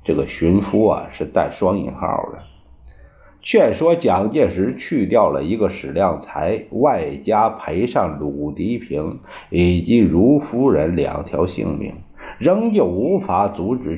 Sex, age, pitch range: male, 50-69, 75-105 Hz